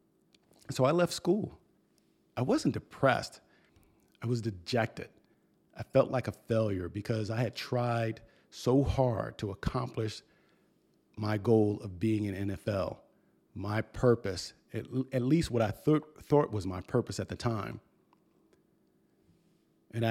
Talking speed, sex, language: 130 wpm, male, English